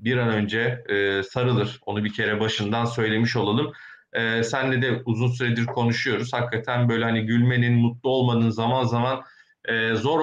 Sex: male